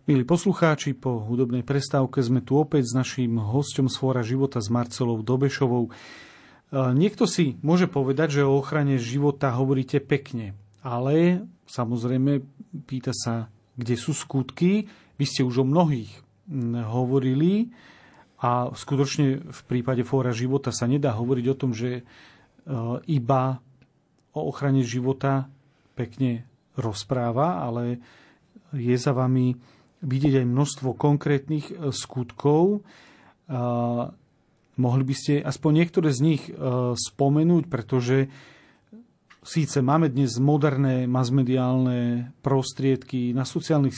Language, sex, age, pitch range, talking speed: Slovak, male, 40-59, 125-145 Hz, 115 wpm